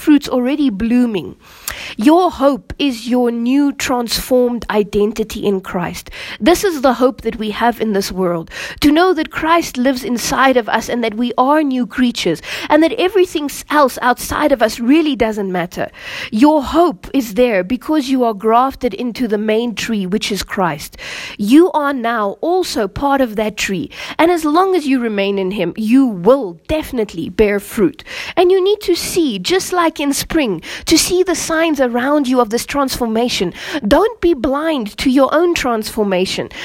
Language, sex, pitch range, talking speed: English, female, 225-305 Hz, 175 wpm